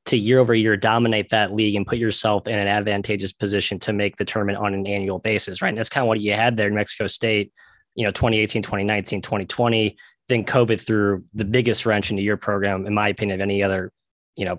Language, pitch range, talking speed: English, 105-120 Hz, 230 wpm